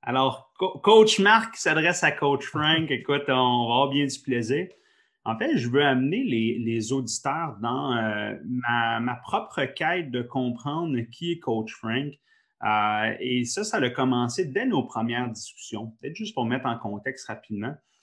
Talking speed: 170 wpm